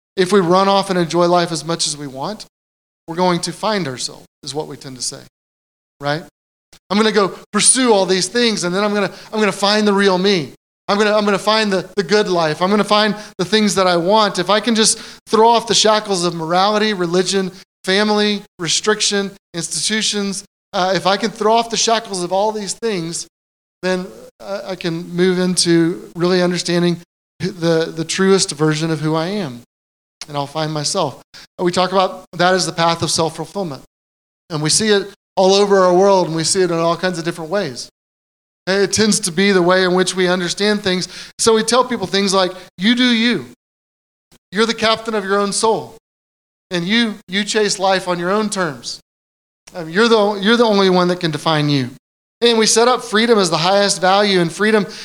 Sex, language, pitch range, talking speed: male, English, 170-210 Hz, 210 wpm